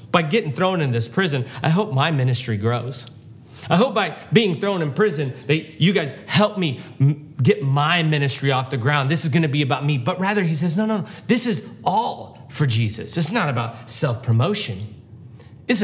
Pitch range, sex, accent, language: 115-145 Hz, male, American, English